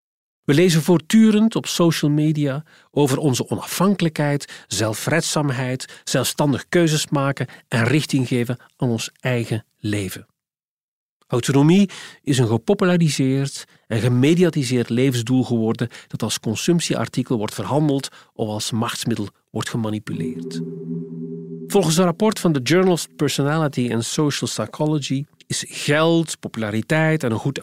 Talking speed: 120 wpm